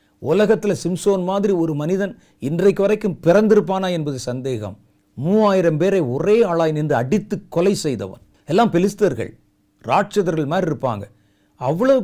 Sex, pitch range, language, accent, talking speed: male, 125-185 Hz, Tamil, native, 120 wpm